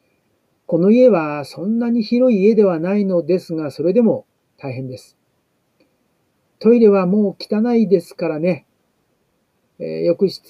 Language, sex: Japanese, male